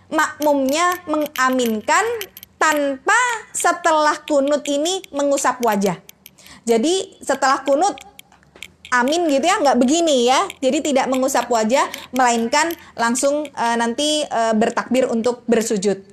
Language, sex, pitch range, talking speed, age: Indonesian, female, 255-300 Hz, 110 wpm, 20-39